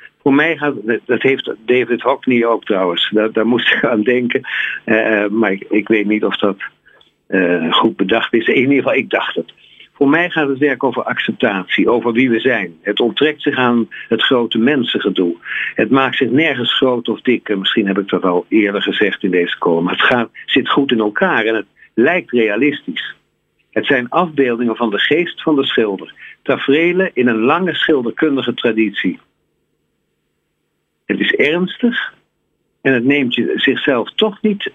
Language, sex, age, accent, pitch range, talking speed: Dutch, male, 50-69, Dutch, 115-155 Hz, 180 wpm